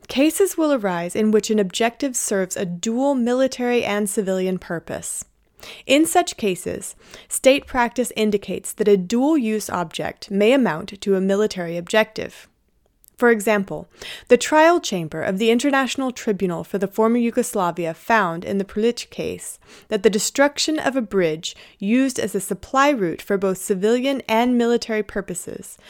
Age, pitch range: 30-49, 195-250 Hz